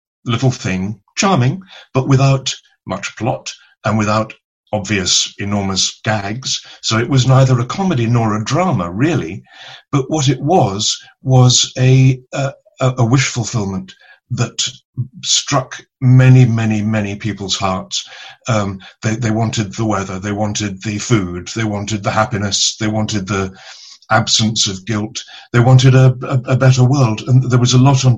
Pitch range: 100-130 Hz